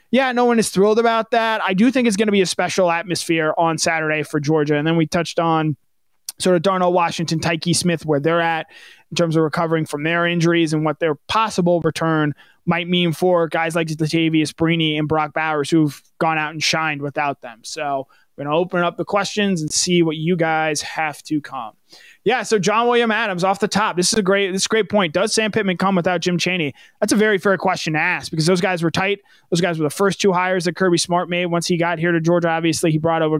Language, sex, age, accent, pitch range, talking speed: English, male, 20-39, American, 160-190 Hz, 245 wpm